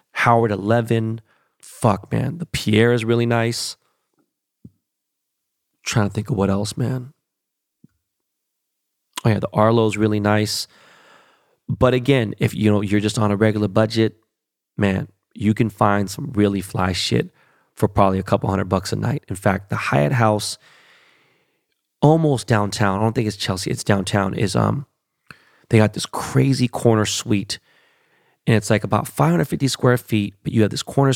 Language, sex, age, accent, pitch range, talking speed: English, male, 30-49, American, 105-125 Hz, 165 wpm